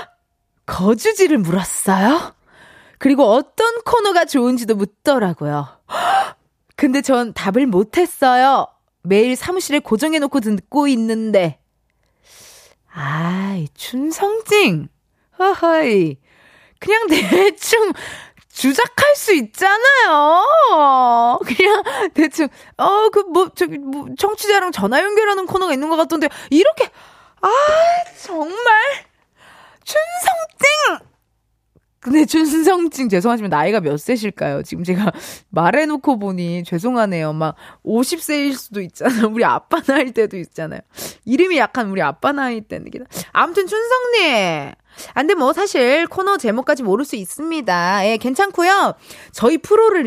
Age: 20-39